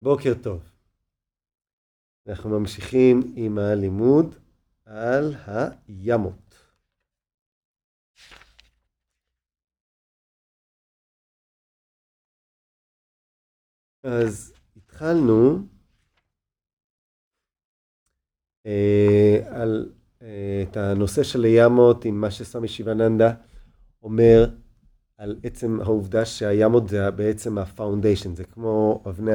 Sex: male